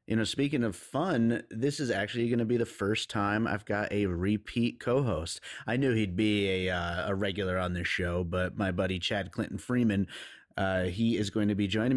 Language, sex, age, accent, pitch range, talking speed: English, male, 30-49, American, 95-120 Hz, 215 wpm